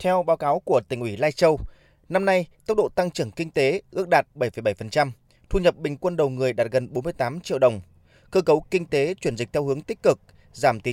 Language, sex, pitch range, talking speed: Vietnamese, male, 125-175 Hz, 230 wpm